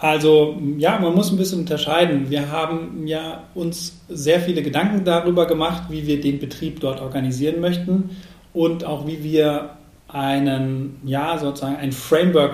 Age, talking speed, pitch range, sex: 40-59, 155 wpm, 140-165 Hz, male